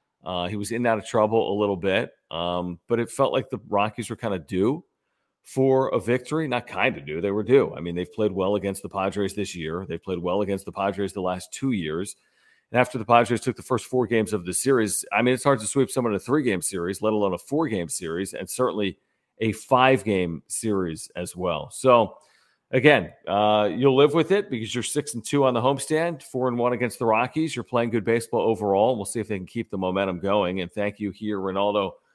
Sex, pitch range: male, 100-125 Hz